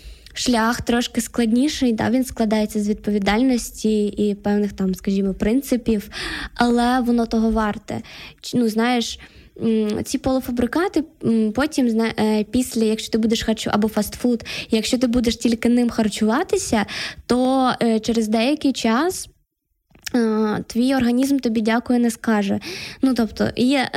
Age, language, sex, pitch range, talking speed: 10-29, Ukrainian, female, 210-250 Hz, 120 wpm